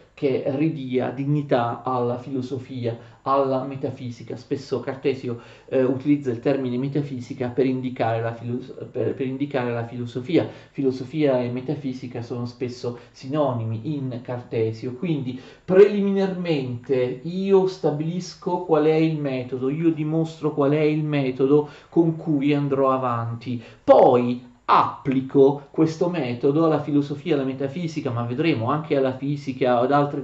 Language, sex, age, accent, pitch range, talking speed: Italian, male, 40-59, native, 125-155 Hz, 125 wpm